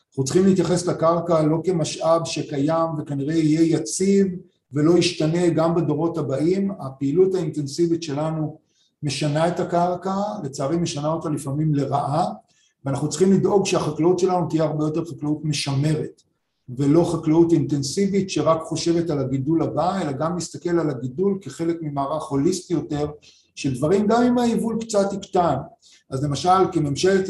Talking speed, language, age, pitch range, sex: 140 wpm, Hebrew, 50-69, 150-185 Hz, male